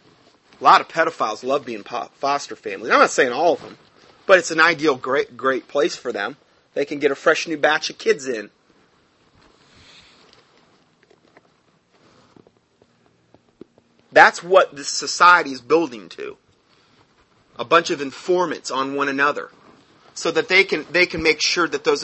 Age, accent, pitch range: 30-49, American, 140-195 Hz